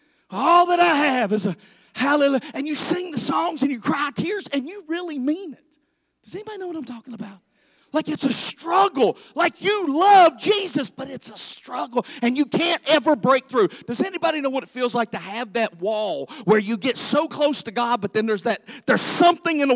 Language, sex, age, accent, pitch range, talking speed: English, male, 40-59, American, 215-300 Hz, 220 wpm